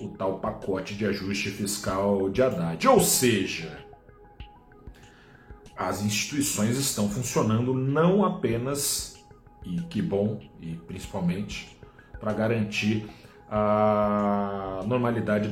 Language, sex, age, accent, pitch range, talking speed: Portuguese, male, 40-59, Brazilian, 105-140 Hz, 95 wpm